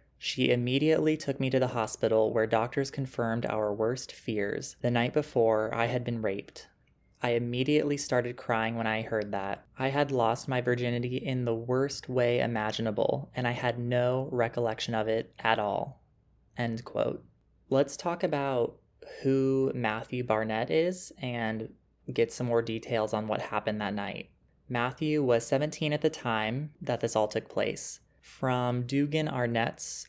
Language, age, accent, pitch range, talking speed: English, 20-39, American, 115-140 Hz, 160 wpm